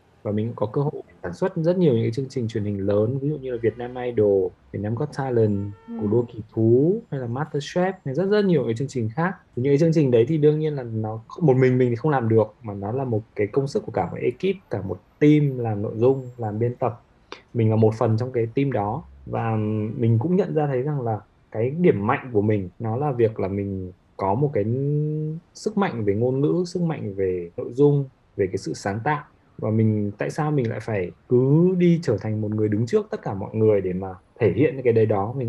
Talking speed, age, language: 250 wpm, 20-39, Vietnamese